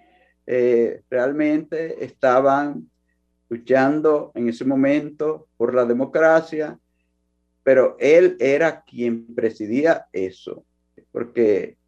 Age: 50-69